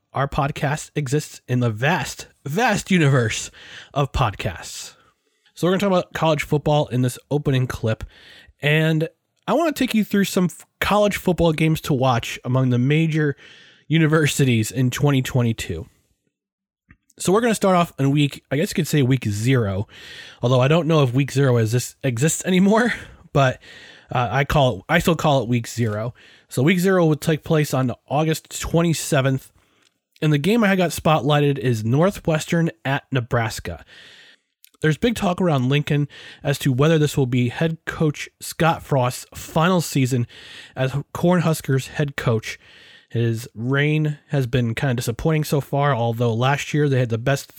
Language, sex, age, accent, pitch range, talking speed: English, male, 20-39, American, 125-160 Hz, 170 wpm